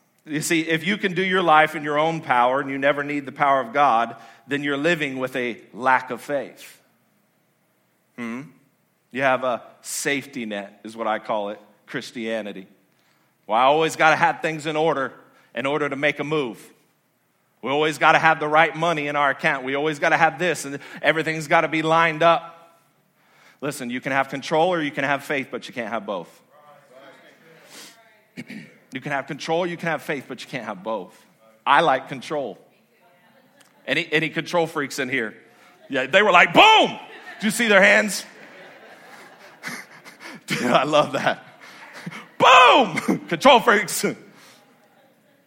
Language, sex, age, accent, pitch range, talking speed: English, male, 40-59, American, 130-160 Hz, 175 wpm